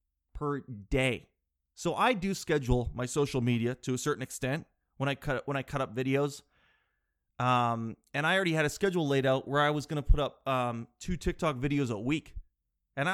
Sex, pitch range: male, 130-165 Hz